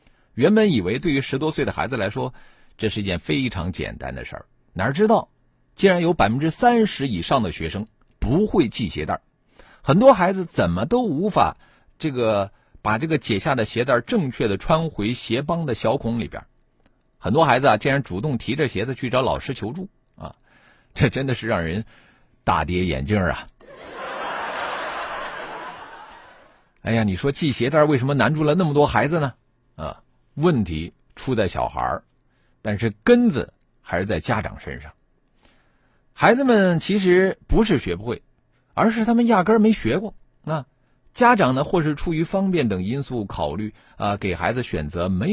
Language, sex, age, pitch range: Chinese, male, 50-69, 105-170 Hz